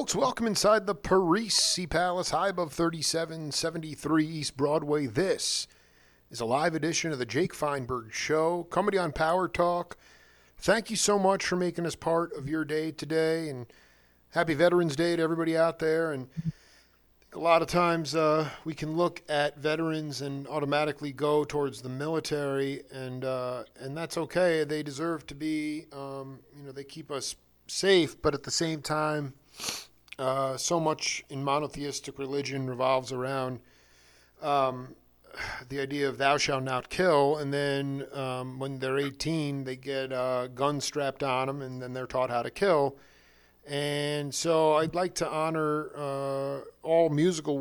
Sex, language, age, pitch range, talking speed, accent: male, English, 40-59, 135-160 Hz, 160 wpm, American